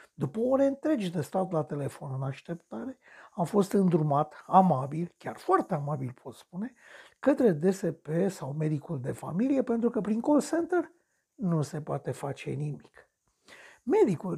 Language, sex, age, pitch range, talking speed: Romanian, male, 60-79, 155-240 Hz, 145 wpm